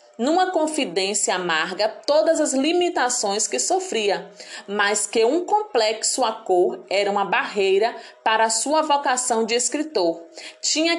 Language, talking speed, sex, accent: Portuguese, 130 wpm, female, Brazilian